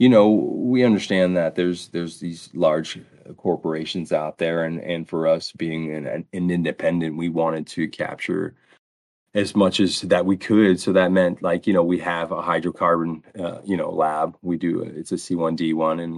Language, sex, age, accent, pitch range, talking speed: English, male, 30-49, American, 80-90 Hz, 185 wpm